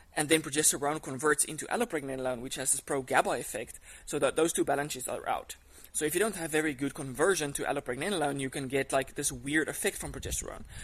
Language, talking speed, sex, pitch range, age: English, 205 wpm, male, 130-155 Hz, 20-39